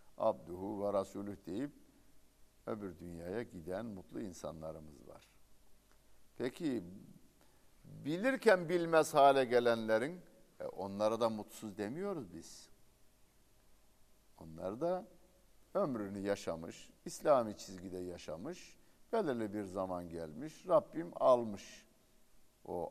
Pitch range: 90-115 Hz